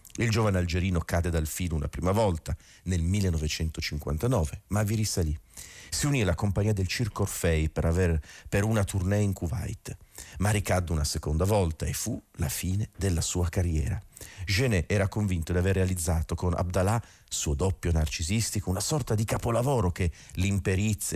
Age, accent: 40-59, native